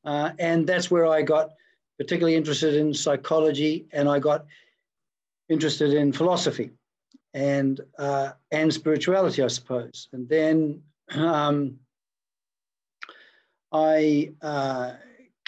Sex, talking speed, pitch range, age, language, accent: male, 105 wpm, 150-190 Hz, 50-69, English, Australian